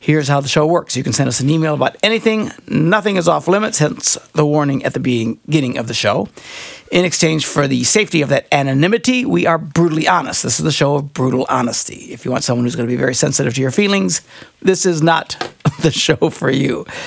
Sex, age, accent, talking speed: male, 60-79, American, 230 wpm